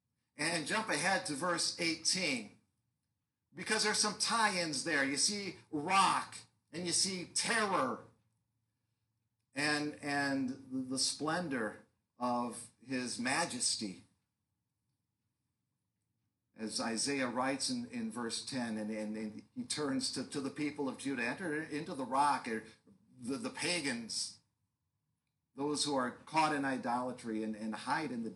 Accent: American